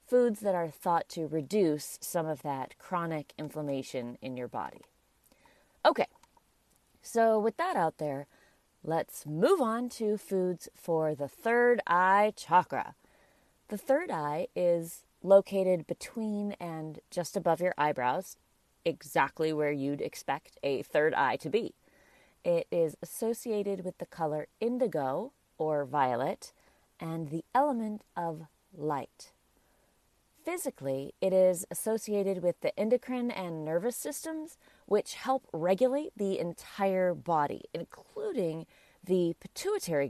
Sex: female